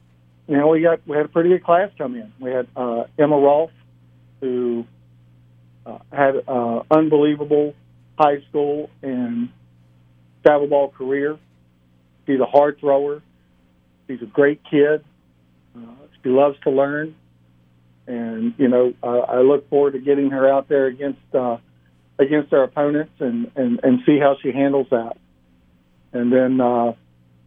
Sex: male